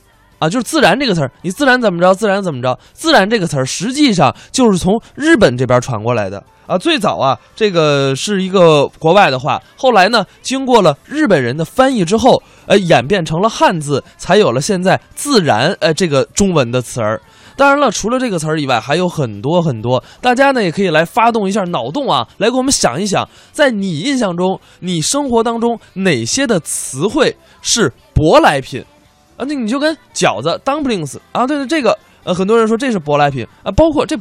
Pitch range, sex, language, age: 140-230 Hz, male, Chinese, 20-39